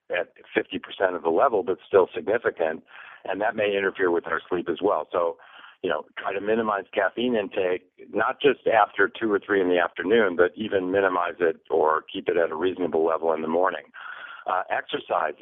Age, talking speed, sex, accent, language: 50-69, 195 wpm, male, American, English